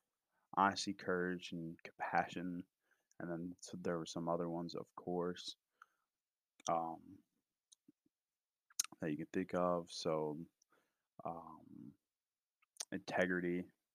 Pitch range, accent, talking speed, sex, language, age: 80-90 Hz, American, 105 wpm, male, English, 20-39